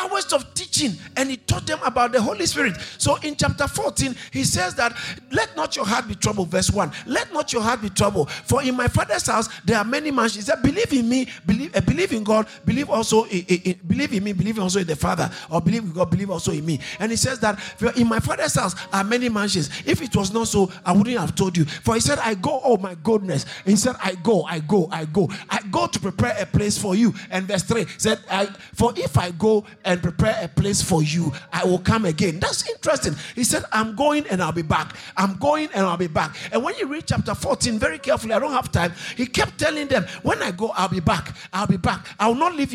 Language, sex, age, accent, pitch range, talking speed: English, male, 50-69, Nigerian, 175-240 Hz, 255 wpm